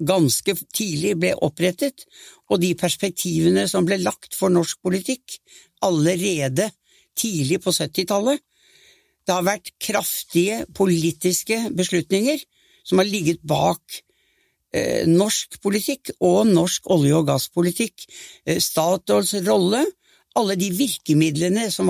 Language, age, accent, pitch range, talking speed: English, 60-79, Norwegian, 170-225 Hz, 105 wpm